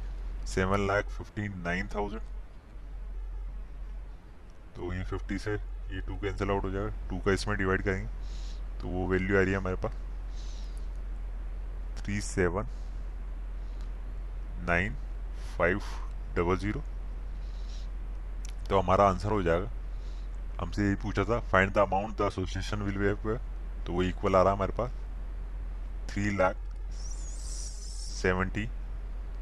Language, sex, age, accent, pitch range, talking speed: Hindi, male, 20-39, native, 85-105 Hz, 90 wpm